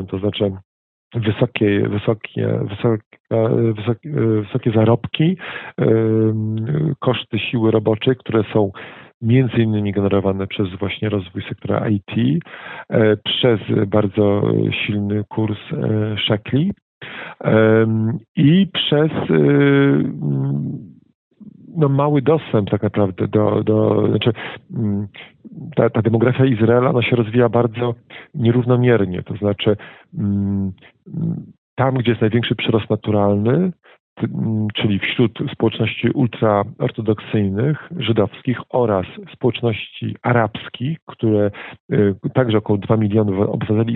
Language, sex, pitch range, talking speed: Polish, male, 105-125 Hz, 90 wpm